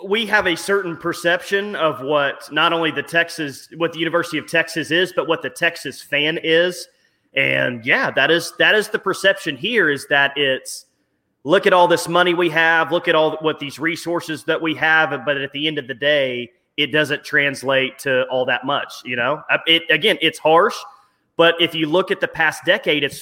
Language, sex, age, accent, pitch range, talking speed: English, male, 30-49, American, 145-185 Hz, 205 wpm